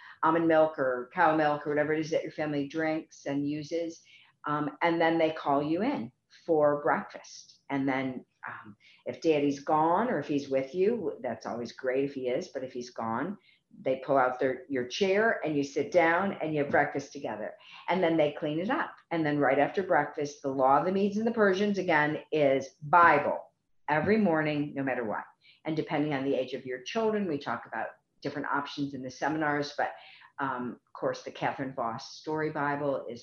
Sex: female